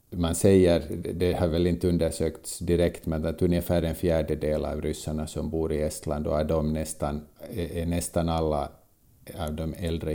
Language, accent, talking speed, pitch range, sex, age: Swedish, Finnish, 165 wpm, 80-90 Hz, male, 50-69